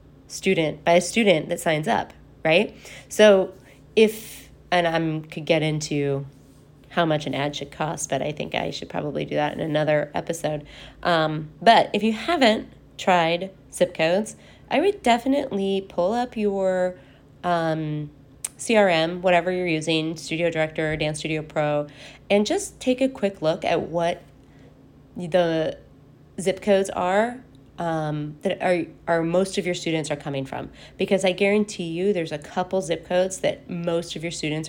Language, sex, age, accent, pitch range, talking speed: English, female, 20-39, American, 150-190 Hz, 165 wpm